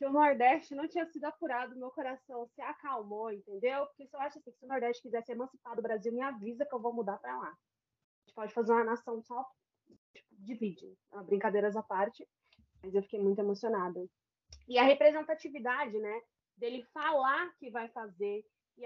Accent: Brazilian